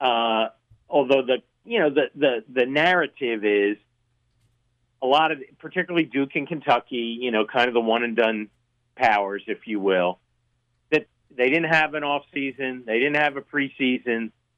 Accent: American